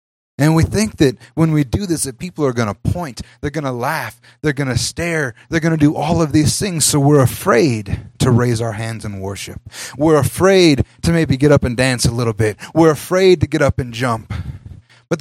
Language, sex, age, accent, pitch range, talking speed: English, male, 30-49, American, 115-160 Hz, 230 wpm